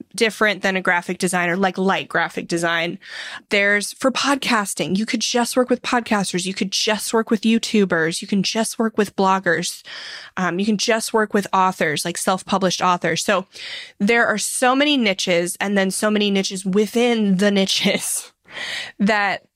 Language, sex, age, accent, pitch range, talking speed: English, female, 20-39, American, 180-225 Hz, 170 wpm